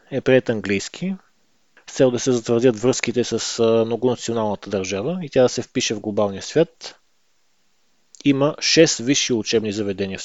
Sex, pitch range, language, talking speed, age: male, 115-140 Hz, Bulgarian, 150 wpm, 20-39